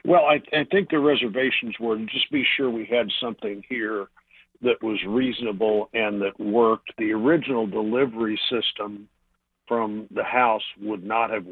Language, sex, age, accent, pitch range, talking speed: English, male, 50-69, American, 105-120 Hz, 160 wpm